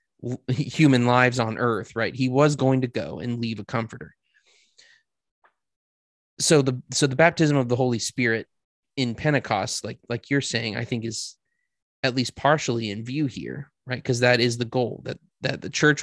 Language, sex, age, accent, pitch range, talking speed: English, male, 20-39, American, 115-130 Hz, 180 wpm